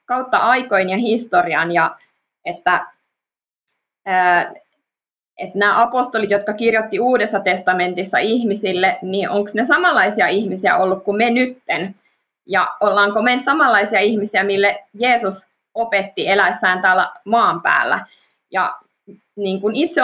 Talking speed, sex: 115 wpm, female